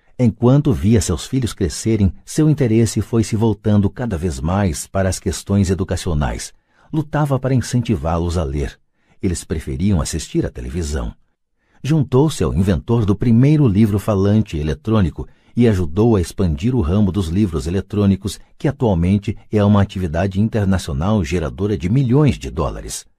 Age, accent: 60-79, Brazilian